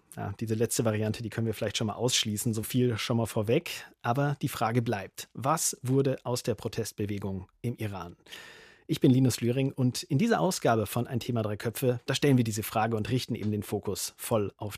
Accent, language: German, German